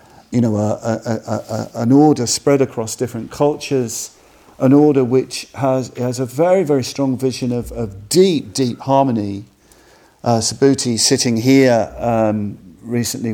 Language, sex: English, male